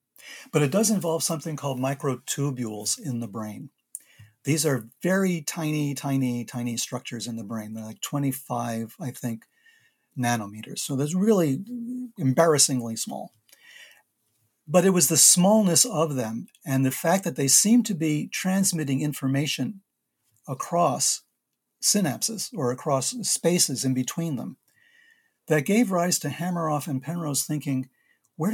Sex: male